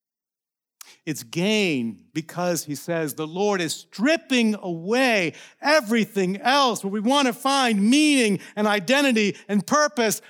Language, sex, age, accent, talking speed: English, male, 50-69, American, 130 wpm